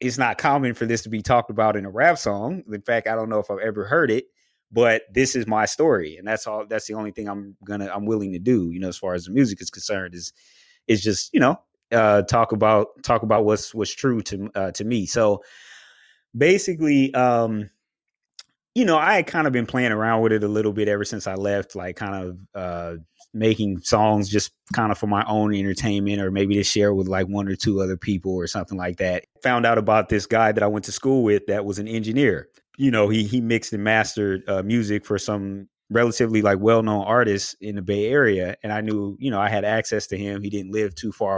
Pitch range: 100-115 Hz